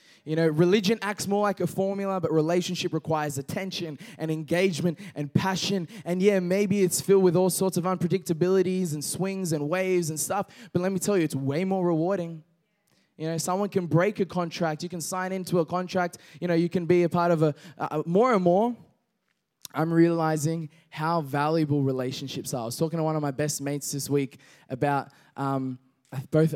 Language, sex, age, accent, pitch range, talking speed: English, male, 10-29, Australian, 145-180 Hz, 195 wpm